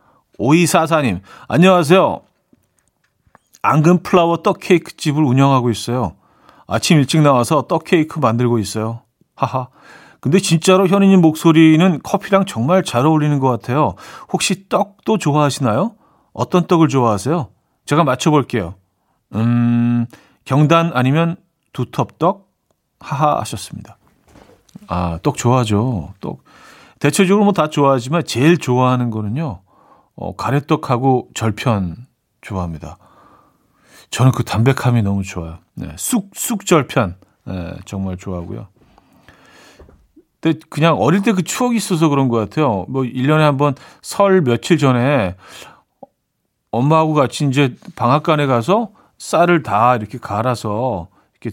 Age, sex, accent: 40-59, male, native